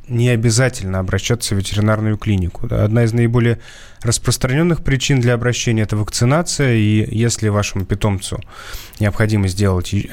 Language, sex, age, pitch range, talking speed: Russian, male, 20-39, 100-120 Hz, 130 wpm